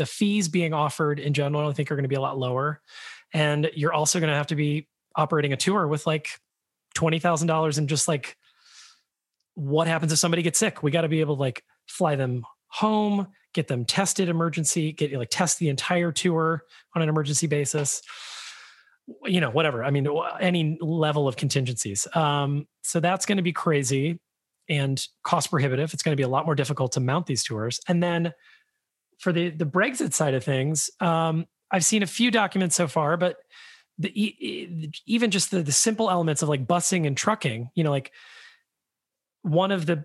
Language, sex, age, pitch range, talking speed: English, male, 30-49, 145-175 Hz, 195 wpm